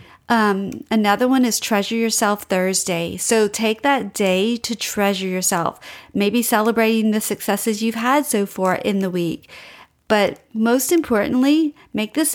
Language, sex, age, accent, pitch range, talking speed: English, female, 40-59, American, 195-230 Hz, 145 wpm